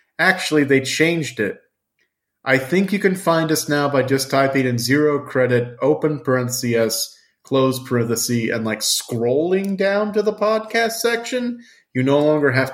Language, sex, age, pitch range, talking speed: English, male, 40-59, 115-150 Hz, 155 wpm